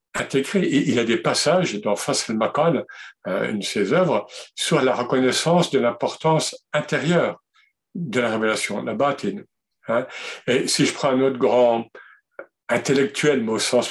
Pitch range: 125-180 Hz